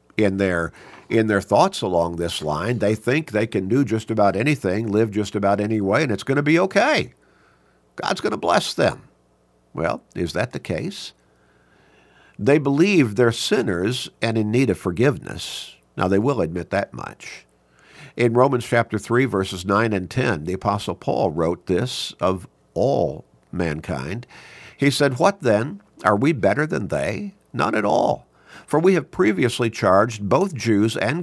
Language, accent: English, American